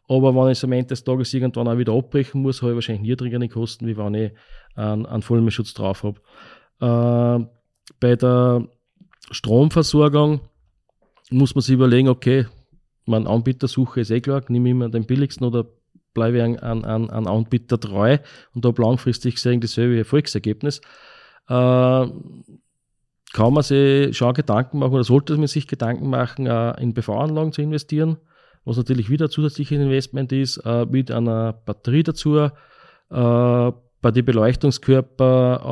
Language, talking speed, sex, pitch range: German, 160 wpm, male, 120-140 Hz